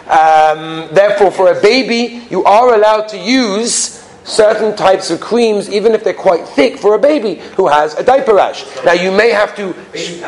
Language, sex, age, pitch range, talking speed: English, male, 40-59, 170-225 Hz, 180 wpm